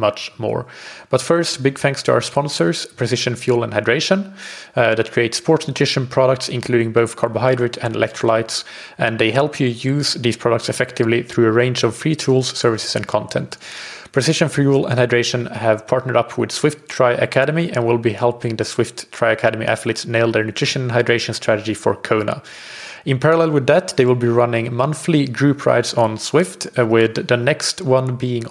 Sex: male